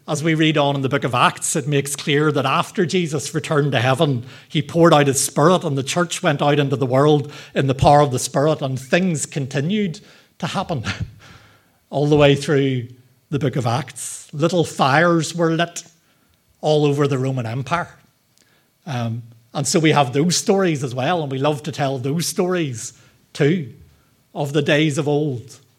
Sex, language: male, English